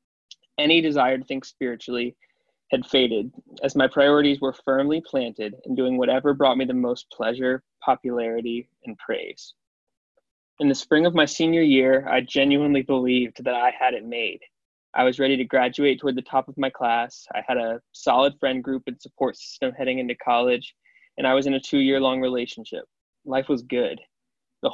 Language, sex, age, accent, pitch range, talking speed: English, male, 20-39, American, 125-145 Hz, 175 wpm